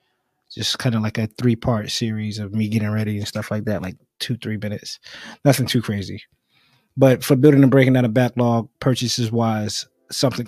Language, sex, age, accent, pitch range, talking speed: English, male, 20-39, American, 105-125 Hz, 185 wpm